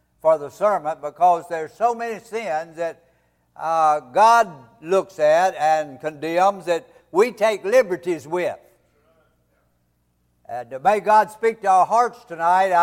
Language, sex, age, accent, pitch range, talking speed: English, male, 60-79, American, 145-210 Hz, 135 wpm